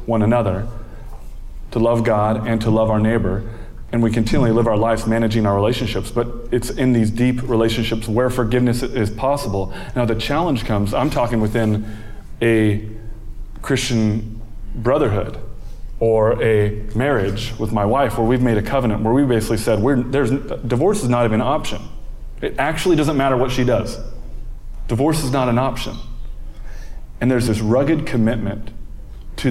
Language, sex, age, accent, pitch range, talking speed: English, male, 30-49, American, 110-125 Hz, 165 wpm